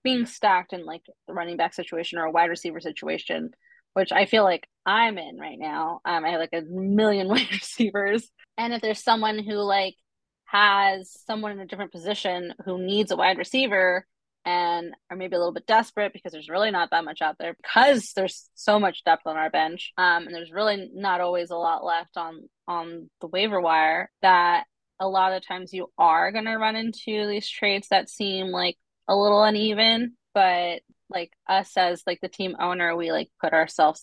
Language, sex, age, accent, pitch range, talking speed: English, female, 20-39, American, 175-215 Hz, 200 wpm